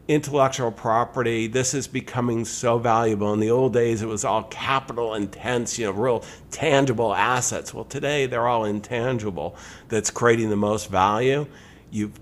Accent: American